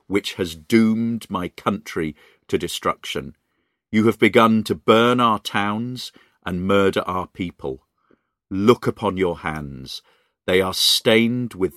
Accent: British